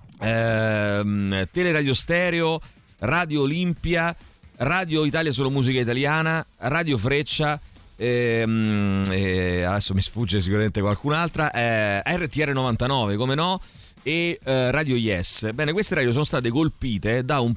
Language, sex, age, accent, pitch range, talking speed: Italian, male, 40-59, native, 100-135 Hz, 125 wpm